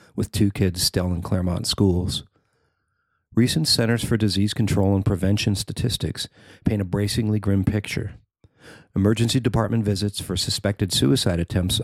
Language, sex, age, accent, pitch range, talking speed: English, male, 40-59, American, 95-115 Hz, 135 wpm